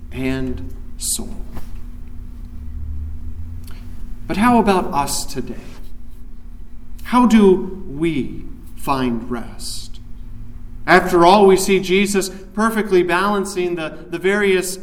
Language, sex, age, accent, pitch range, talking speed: English, male, 40-59, American, 155-220 Hz, 90 wpm